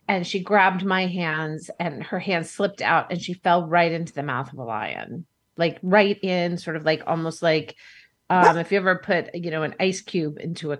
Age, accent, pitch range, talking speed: 30-49, American, 165-205 Hz, 220 wpm